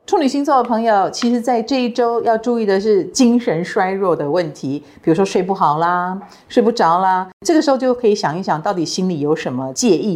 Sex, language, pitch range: female, Chinese, 165-235 Hz